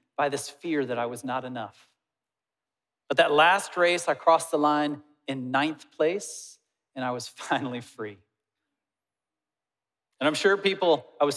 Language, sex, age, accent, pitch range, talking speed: English, male, 40-59, American, 130-190 Hz, 160 wpm